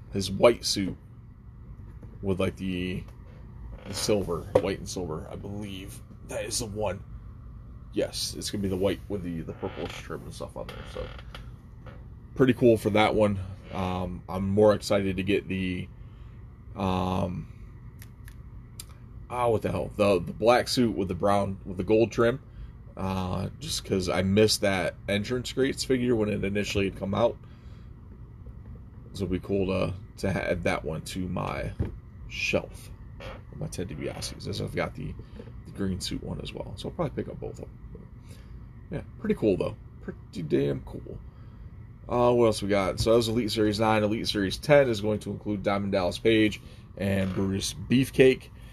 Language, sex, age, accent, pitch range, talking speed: English, male, 20-39, American, 95-115 Hz, 170 wpm